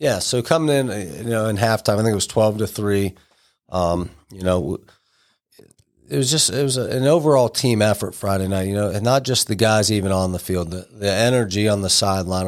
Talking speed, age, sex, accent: 220 wpm, 40-59, male, American